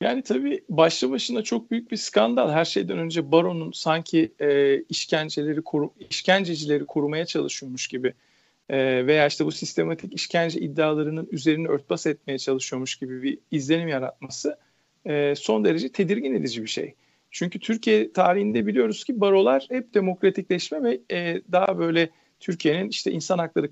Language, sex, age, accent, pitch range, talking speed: Turkish, male, 40-59, native, 150-215 Hz, 145 wpm